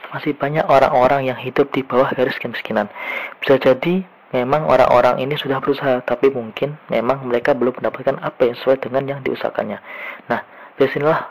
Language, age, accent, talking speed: Indonesian, 20-39, native, 160 wpm